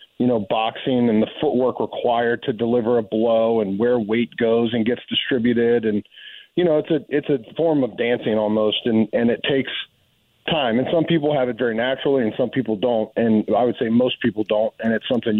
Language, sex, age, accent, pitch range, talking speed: English, male, 40-59, American, 105-120 Hz, 215 wpm